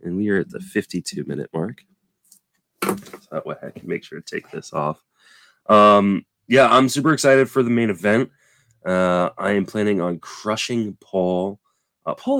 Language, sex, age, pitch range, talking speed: English, male, 20-39, 95-120 Hz, 170 wpm